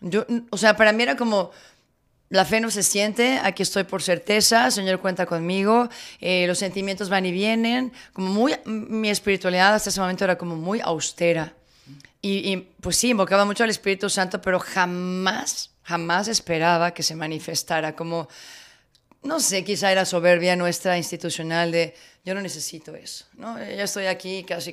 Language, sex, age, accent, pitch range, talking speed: Spanish, female, 30-49, Spanish, 180-215 Hz, 170 wpm